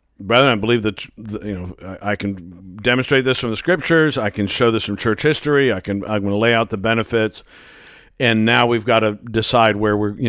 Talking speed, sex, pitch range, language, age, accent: 220 wpm, male, 105-120 Hz, English, 50-69, American